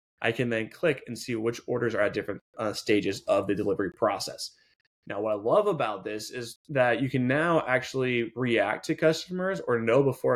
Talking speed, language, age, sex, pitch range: 205 wpm, English, 20-39, male, 115-140 Hz